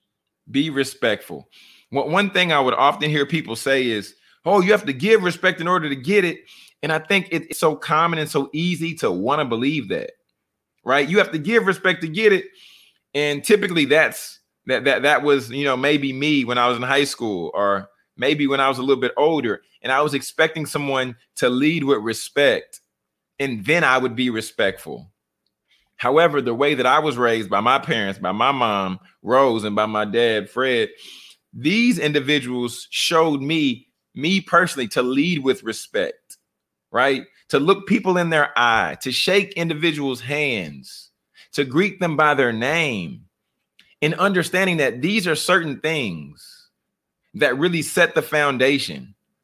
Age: 30-49